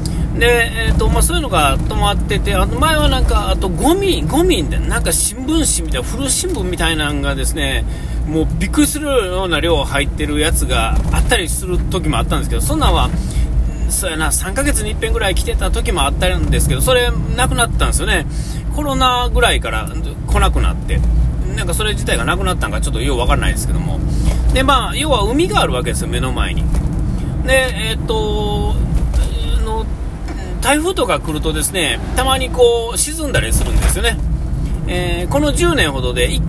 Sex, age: male, 40-59